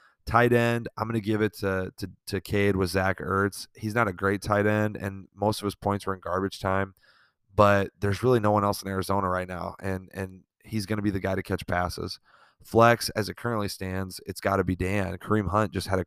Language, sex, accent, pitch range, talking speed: English, male, American, 95-105 Hz, 245 wpm